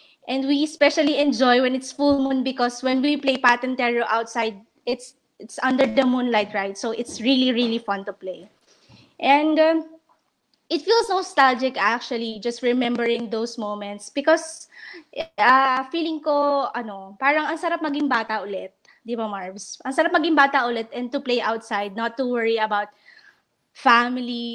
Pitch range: 220-290 Hz